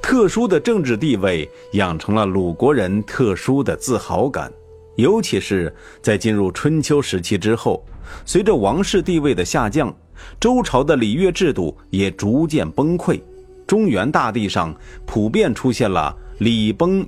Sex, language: male, Chinese